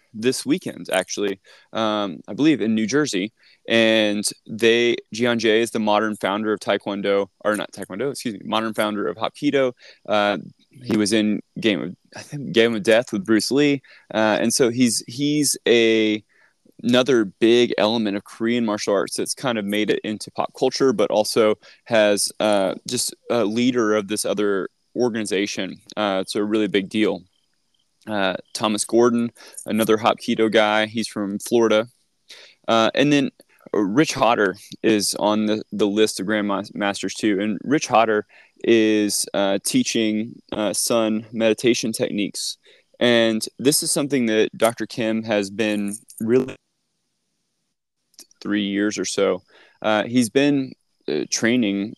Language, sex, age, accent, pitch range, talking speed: English, male, 20-39, American, 105-120 Hz, 150 wpm